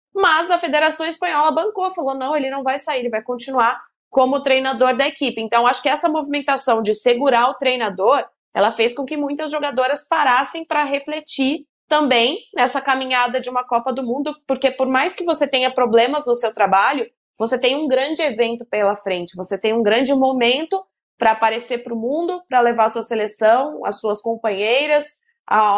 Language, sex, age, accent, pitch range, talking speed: Portuguese, female, 20-39, Brazilian, 235-300 Hz, 185 wpm